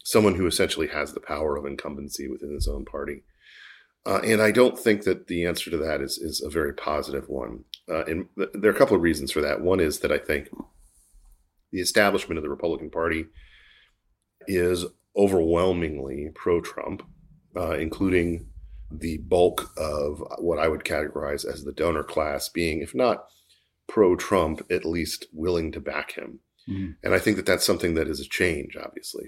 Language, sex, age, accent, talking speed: English, male, 40-59, American, 180 wpm